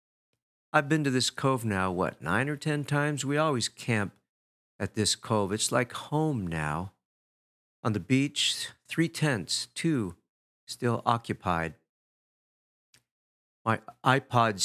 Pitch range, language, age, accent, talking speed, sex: 95-125 Hz, English, 50-69, American, 125 wpm, male